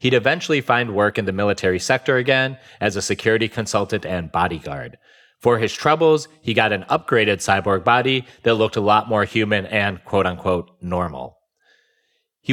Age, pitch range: 30-49, 100-130 Hz